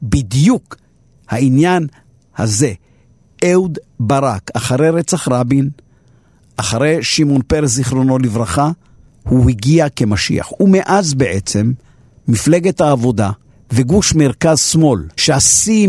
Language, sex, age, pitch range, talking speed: Hebrew, male, 50-69, 125-175 Hz, 90 wpm